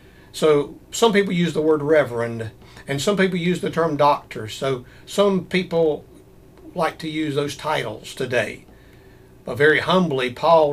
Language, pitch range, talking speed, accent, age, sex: English, 135-175 Hz, 150 wpm, American, 60-79, male